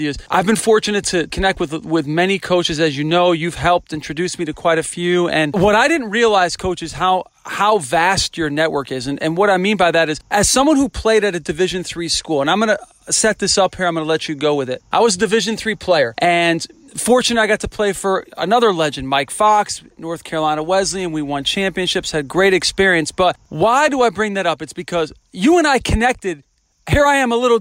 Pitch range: 170-215 Hz